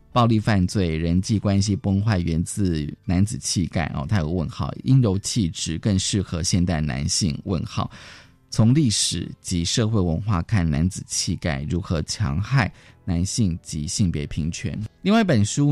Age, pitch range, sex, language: 20-39, 85-110 Hz, male, Chinese